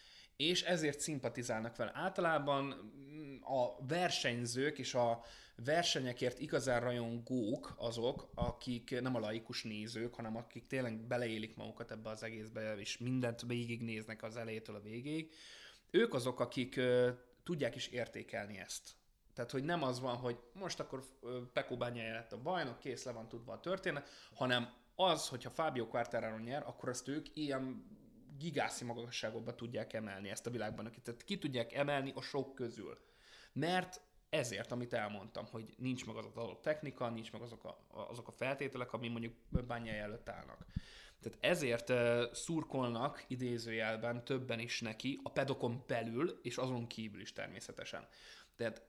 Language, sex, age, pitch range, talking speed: Hungarian, male, 20-39, 115-135 Hz, 145 wpm